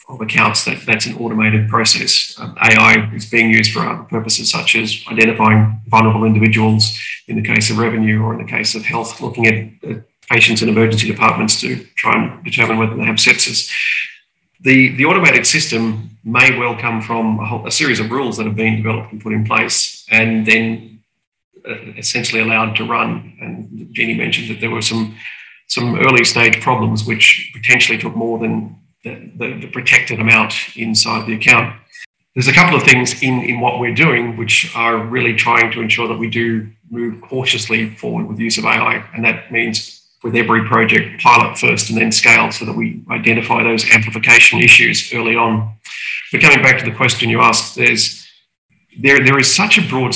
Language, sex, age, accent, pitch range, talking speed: English, male, 40-59, Australian, 110-120 Hz, 190 wpm